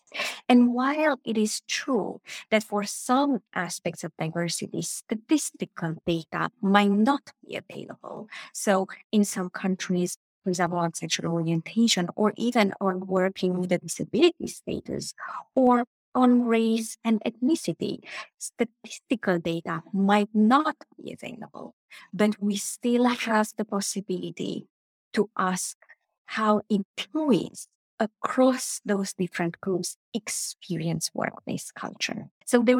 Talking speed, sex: 115 wpm, female